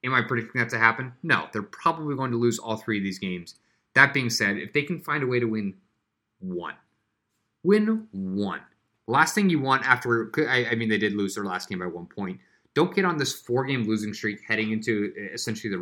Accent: American